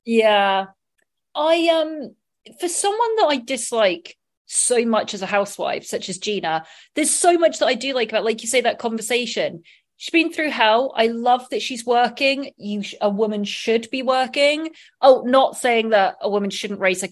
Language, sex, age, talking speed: English, female, 30-49, 190 wpm